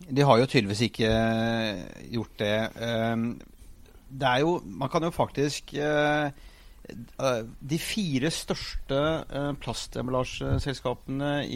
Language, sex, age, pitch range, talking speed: English, male, 30-49, 120-145 Hz, 100 wpm